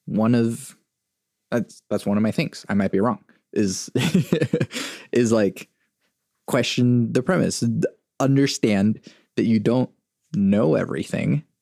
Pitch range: 100-135 Hz